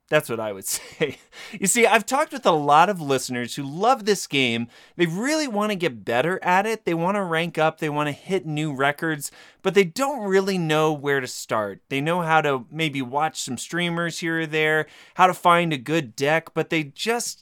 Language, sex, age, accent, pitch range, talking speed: English, male, 30-49, American, 140-190 Hz, 215 wpm